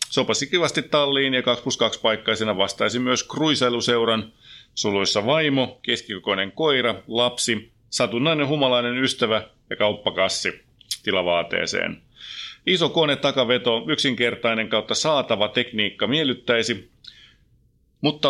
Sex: male